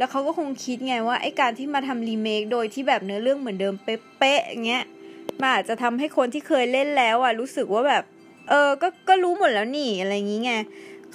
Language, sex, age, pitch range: Thai, female, 20-39, 220-280 Hz